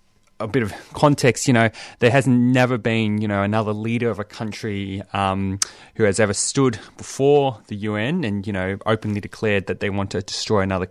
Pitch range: 95-115 Hz